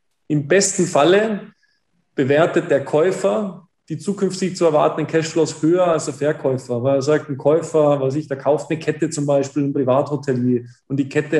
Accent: German